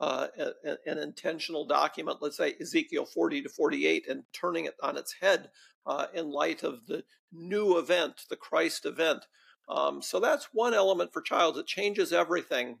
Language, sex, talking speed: English, male, 170 wpm